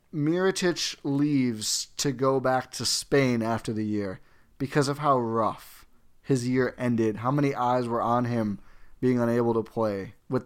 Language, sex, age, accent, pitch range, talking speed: English, male, 30-49, American, 115-145 Hz, 160 wpm